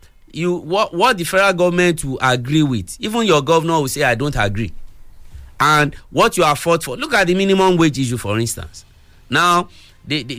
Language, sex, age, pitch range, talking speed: English, male, 50-69, 130-185 Hz, 195 wpm